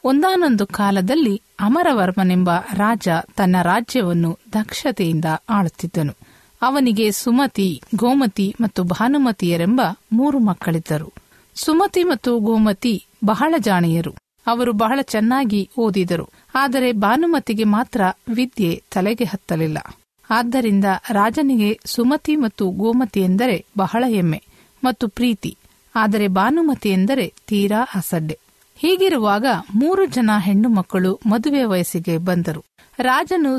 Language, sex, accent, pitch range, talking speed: Kannada, female, native, 190-255 Hz, 95 wpm